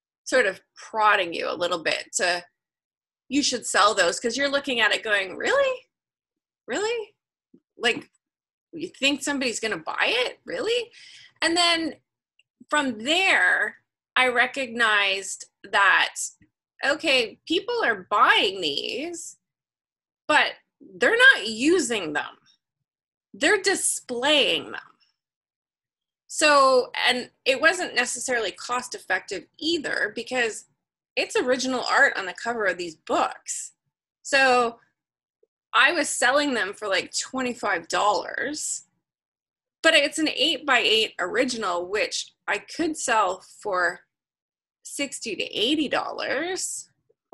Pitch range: 245-380 Hz